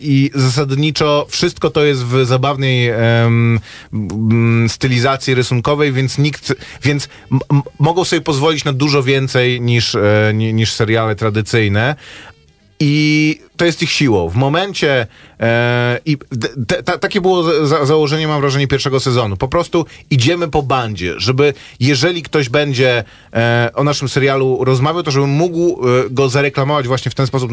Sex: male